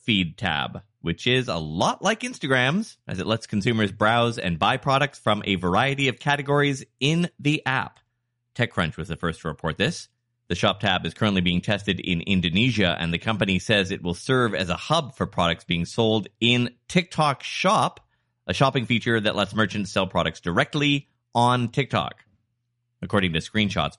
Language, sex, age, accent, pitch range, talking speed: English, male, 30-49, American, 95-125 Hz, 180 wpm